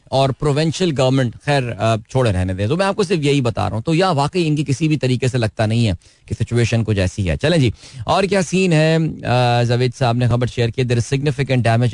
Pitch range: 110-140 Hz